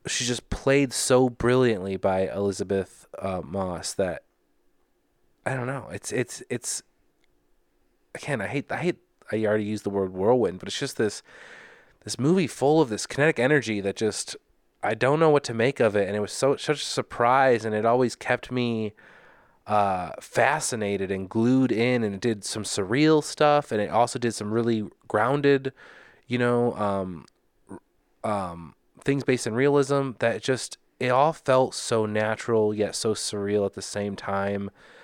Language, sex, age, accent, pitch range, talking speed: English, male, 20-39, American, 100-120 Hz, 170 wpm